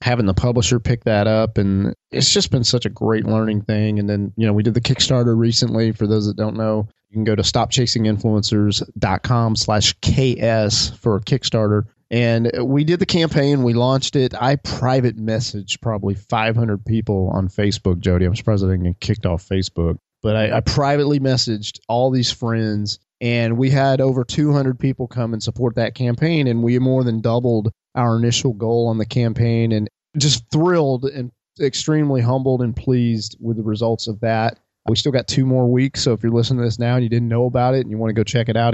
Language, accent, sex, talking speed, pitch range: English, American, male, 205 wpm, 110-125 Hz